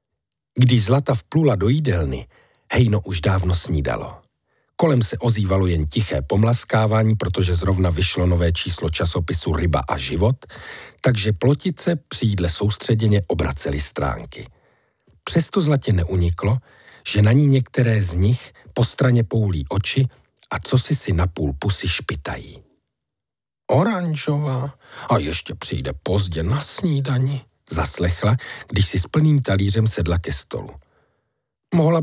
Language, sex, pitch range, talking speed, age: Czech, male, 95-140 Hz, 125 wpm, 50-69